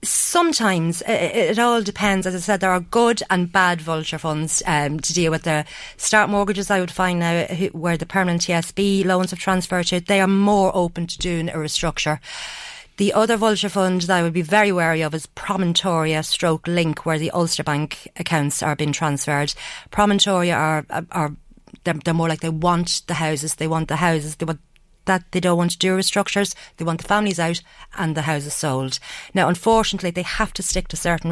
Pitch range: 160-190 Hz